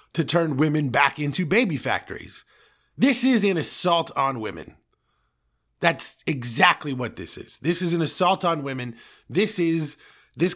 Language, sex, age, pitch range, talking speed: English, male, 30-49, 125-175 Hz, 155 wpm